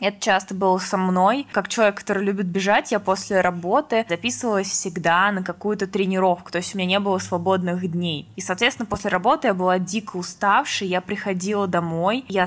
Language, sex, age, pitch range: Russian, female, 20-39, 185-210 Hz